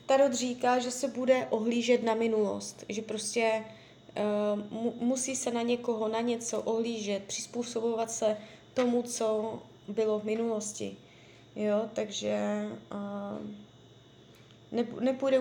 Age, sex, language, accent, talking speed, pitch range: 20-39, female, Czech, native, 115 wpm, 215-245 Hz